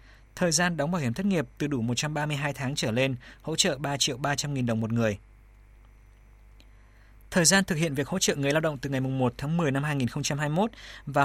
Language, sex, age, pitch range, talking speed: Vietnamese, male, 20-39, 120-160 Hz, 215 wpm